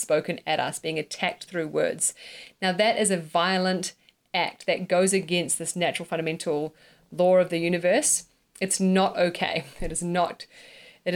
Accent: Australian